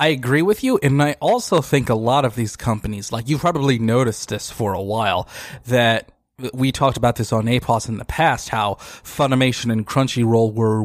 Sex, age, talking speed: male, 30-49, 200 wpm